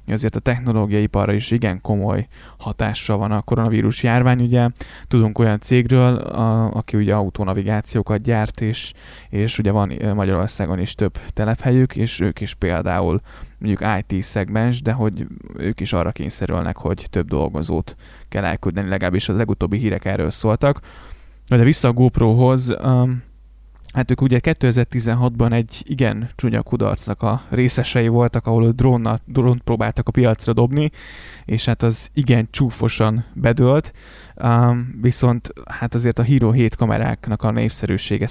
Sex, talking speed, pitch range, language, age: male, 140 wpm, 100-120 Hz, Hungarian, 10-29